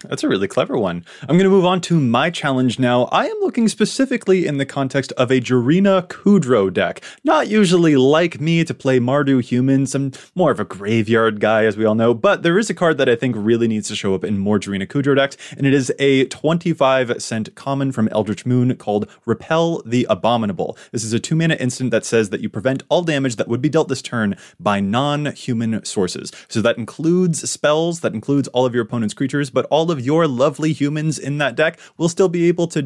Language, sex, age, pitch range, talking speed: English, male, 20-39, 120-165 Hz, 220 wpm